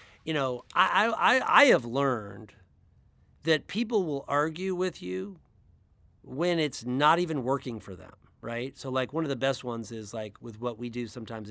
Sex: male